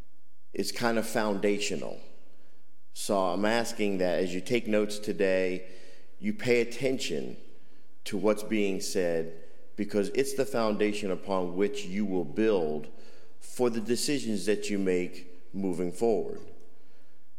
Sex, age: male, 50-69